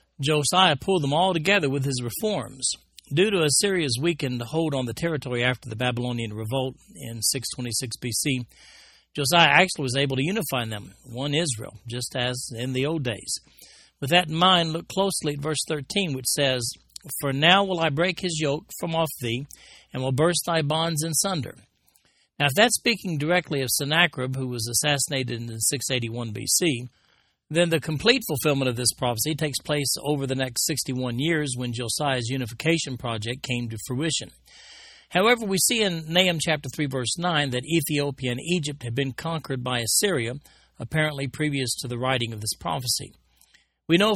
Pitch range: 125-160 Hz